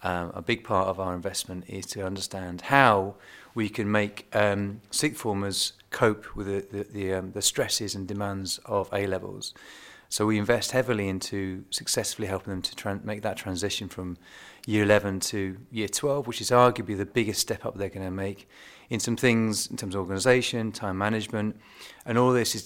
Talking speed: 190 wpm